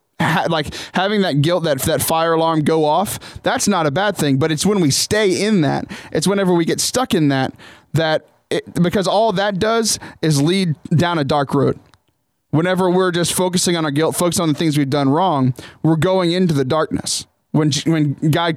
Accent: American